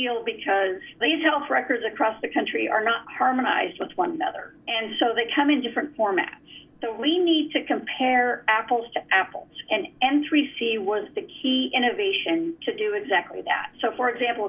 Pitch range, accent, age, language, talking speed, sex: 230-330 Hz, American, 50-69, English, 170 wpm, female